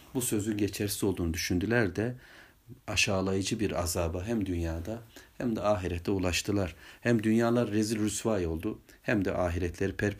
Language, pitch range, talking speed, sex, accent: Turkish, 90-110 Hz, 140 wpm, male, native